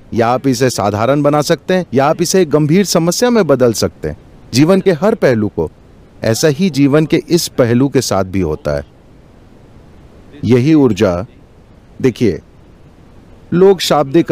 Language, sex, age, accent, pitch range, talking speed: Hindi, male, 40-59, native, 120-160 Hz, 155 wpm